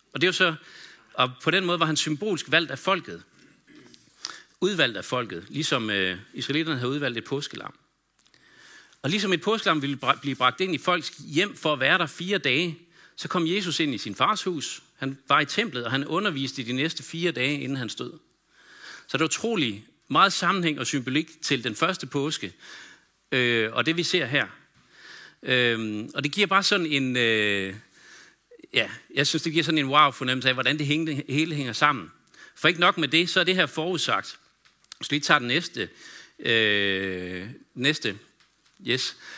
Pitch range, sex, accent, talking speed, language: 125-165 Hz, male, native, 185 wpm, Danish